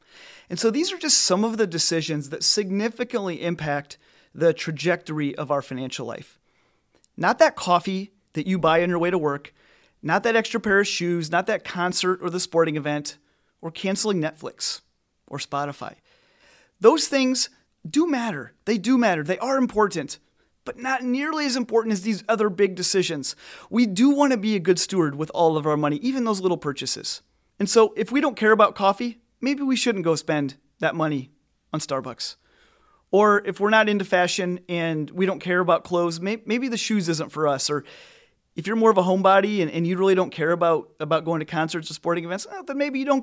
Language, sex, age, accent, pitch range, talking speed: English, male, 30-49, American, 165-230 Hz, 195 wpm